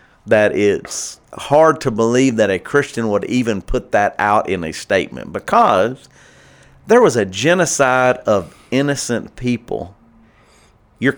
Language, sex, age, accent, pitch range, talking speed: English, male, 40-59, American, 105-140 Hz, 135 wpm